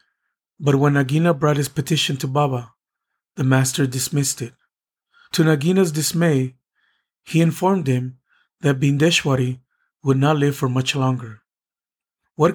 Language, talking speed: English, 130 wpm